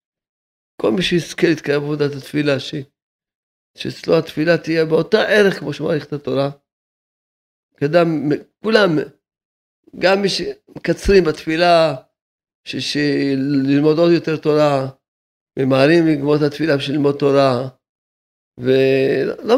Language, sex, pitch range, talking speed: Hebrew, male, 140-180 Hz, 110 wpm